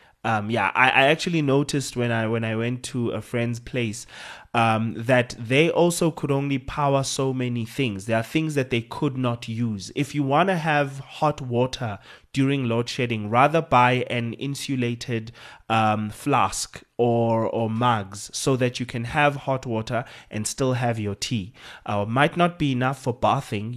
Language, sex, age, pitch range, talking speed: English, male, 20-39, 115-135 Hz, 180 wpm